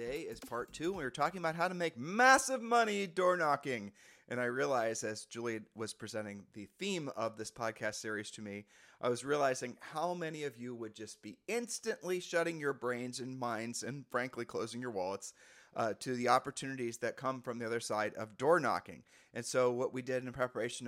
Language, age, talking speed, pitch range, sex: English, 30-49, 200 wpm, 115-145 Hz, male